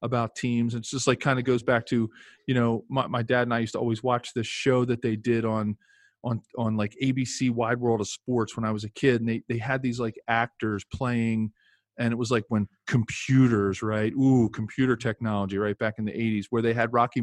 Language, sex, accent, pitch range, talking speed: English, male, American, 110-130 Hz, 235 wpm